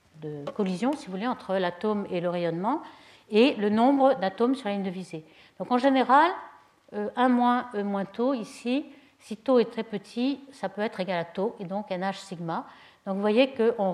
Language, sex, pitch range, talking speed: French, female, 190-250 Hz, 195 wpm